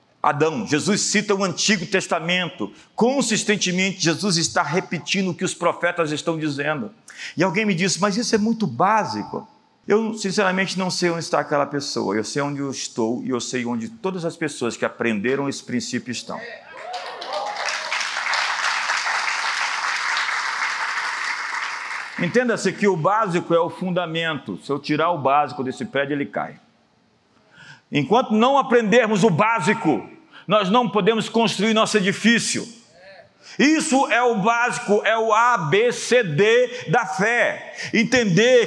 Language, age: Portuguese, 50-69